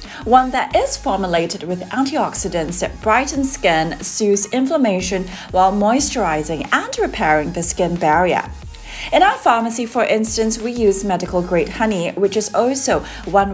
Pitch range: 180-255 Hz